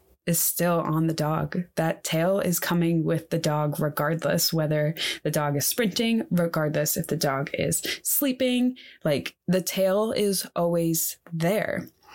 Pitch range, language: 160-180 Hz, English